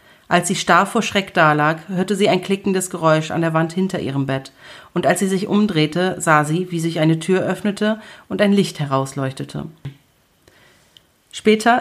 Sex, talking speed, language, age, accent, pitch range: female, 175 wpm, German, 40-59, German, 165-210 Hz